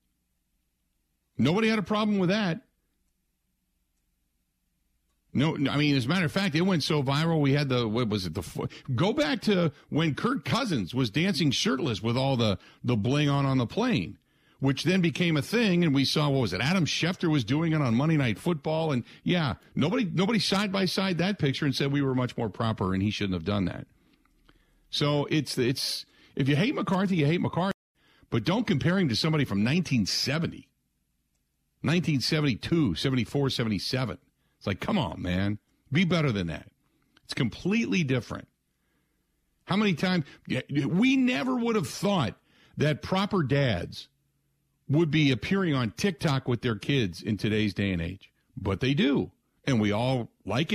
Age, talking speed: 50-69, 175 wpm